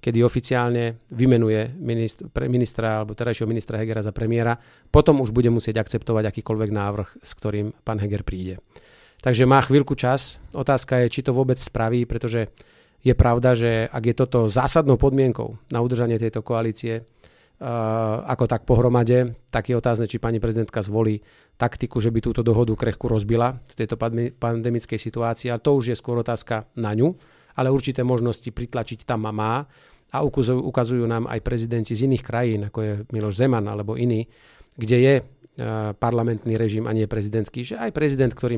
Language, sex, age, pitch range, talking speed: Slovak, male, 40-59, 110-125 Hz, 165 wpm